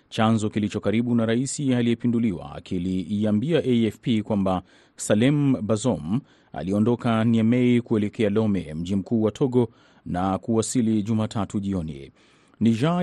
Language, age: Swahili, 30-49